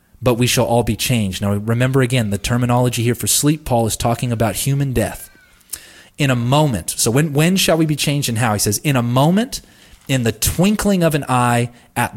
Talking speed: 215 wpm